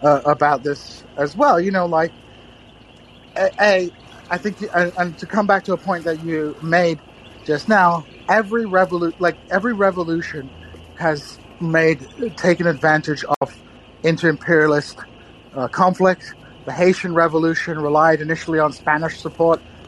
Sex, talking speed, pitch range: male, 140 wpm, 145-175 Hz